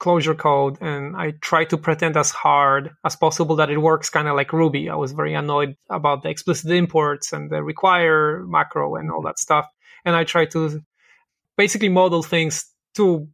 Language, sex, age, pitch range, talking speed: English, male, 20-39, 150-170 Hz, 190 wpm